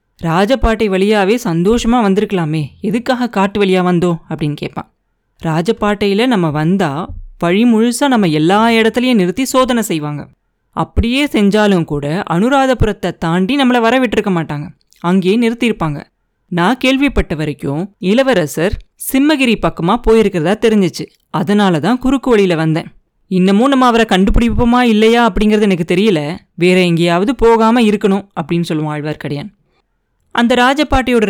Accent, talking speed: native, 115 wpm